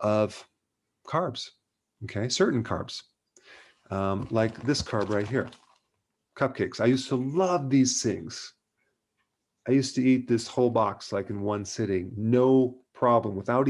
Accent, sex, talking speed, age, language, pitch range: American, male, 140 wpm, 40-59, English, 110-130 Hz